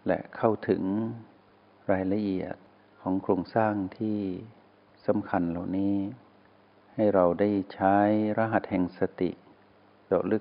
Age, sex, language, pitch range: 60-79, male, Thai, 95-110 Hz